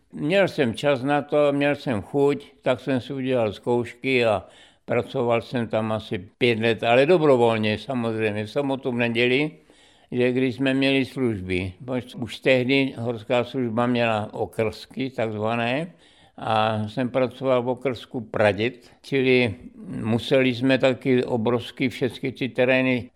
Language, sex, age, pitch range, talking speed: Czech, male, 60-79, 120-140 Hz, 135 wpm